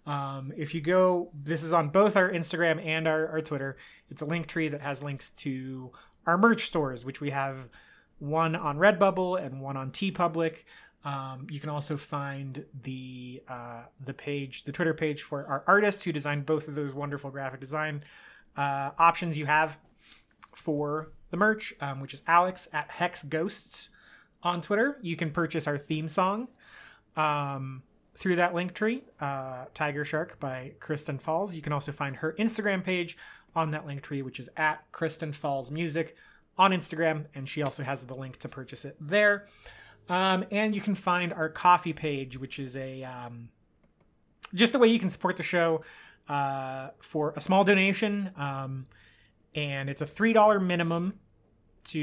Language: English